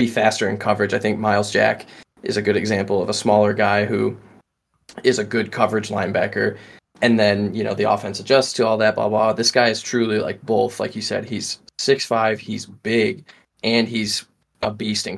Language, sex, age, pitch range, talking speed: English, male, 10-29, 105-115 Hz, 205 wpm